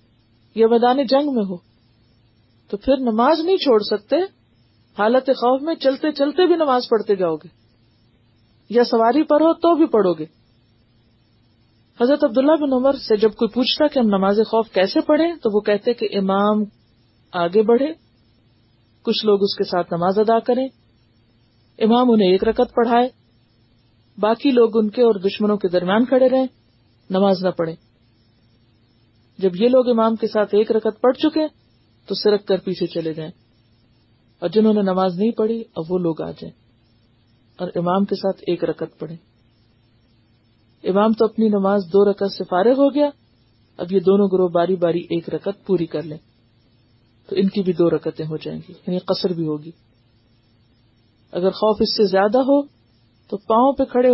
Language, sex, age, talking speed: Urdu, female, 40-59, 170 wpm